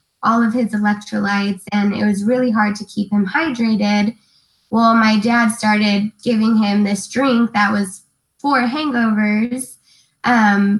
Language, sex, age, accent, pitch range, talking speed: English, female, 10-29, American, 205-225 Hz, 145 wpm